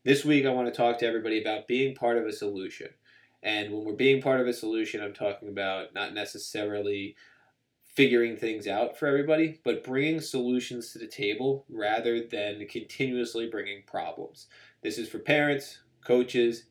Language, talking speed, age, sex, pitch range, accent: English, 170 wpm, 20-39, male, 105-120 Hz, American